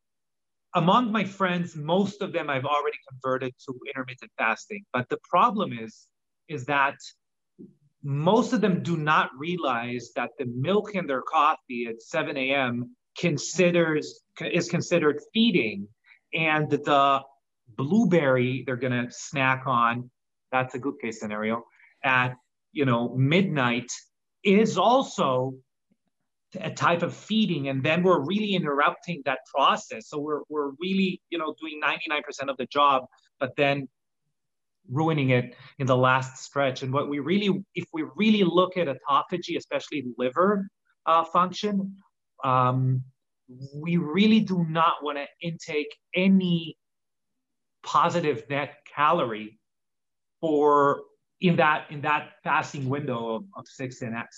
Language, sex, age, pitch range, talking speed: English, male, 30-49, 130-175 Hz, 140 wpm